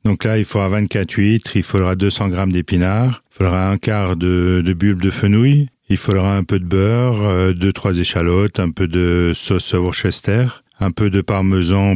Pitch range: 90-105 Hz